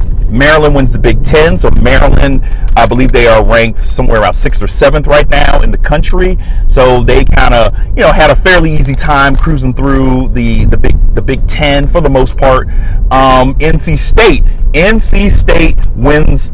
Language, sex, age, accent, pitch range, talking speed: English, male, 40-59, American, 115-145 Hz, 185 wpm